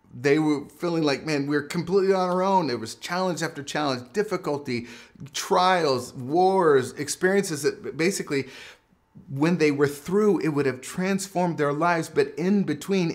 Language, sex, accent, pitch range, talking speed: English, male, American, 120-170 Hz, 155 wpm